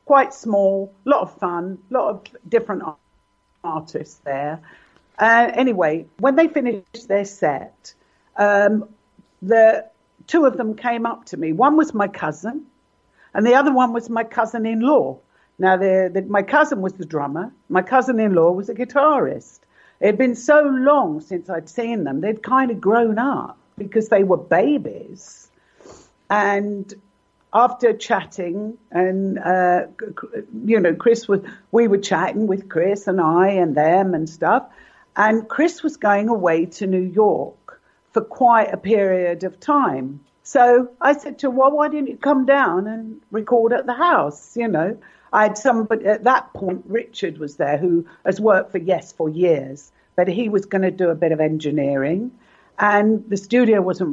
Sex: female